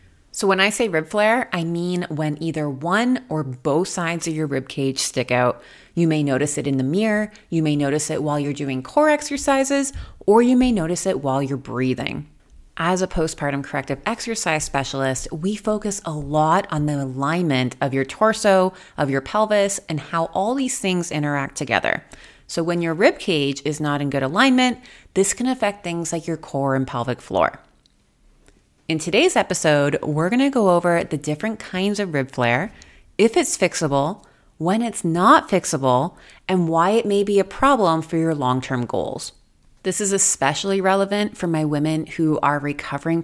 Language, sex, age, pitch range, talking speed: English, female, 30-49, 140-195 Hz, 185 wpm